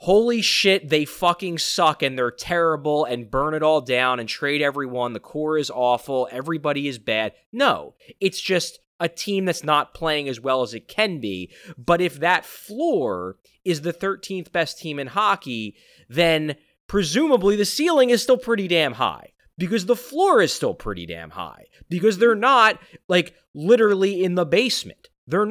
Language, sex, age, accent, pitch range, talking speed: English, male, 20-39, American, 135-200 Hz, 175 wpm